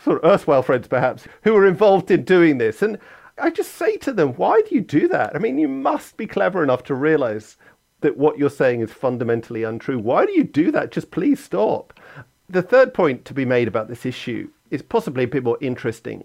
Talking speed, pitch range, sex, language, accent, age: 225 wpm, 120-170 Hz, male, English, British, 40-59